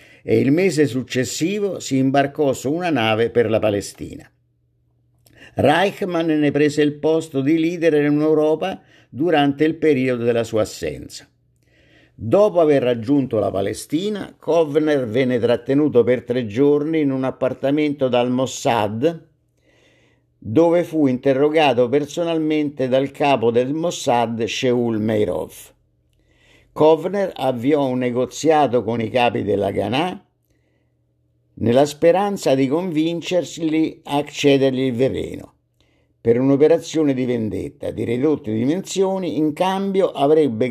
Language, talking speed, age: Italian, 120 wpm, 50-69